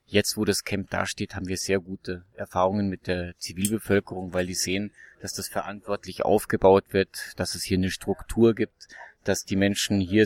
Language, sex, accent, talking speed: German, male, German, 180 wpm